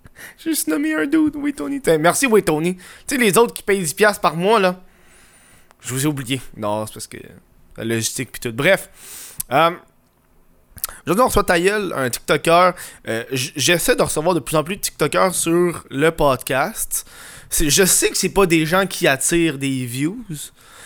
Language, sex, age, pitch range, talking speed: French, male, 20-39, 130-180 Hz, 185 wpm